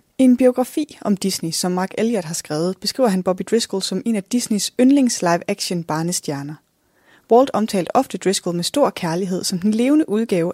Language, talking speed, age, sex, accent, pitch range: Danish, 180 wpm, 20-39, female, native, 175-220 Hz